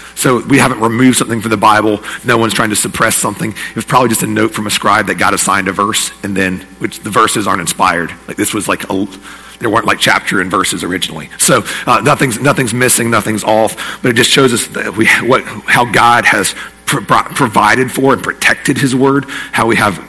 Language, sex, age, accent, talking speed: English, male, 40-59, American, 215 wpm